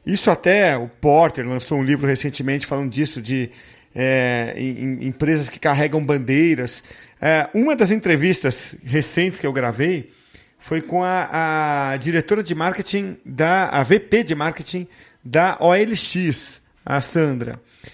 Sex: male